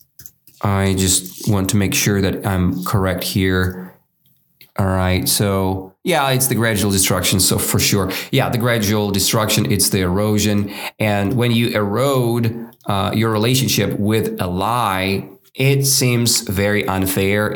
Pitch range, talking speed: 95-125 Hz, 145 wpm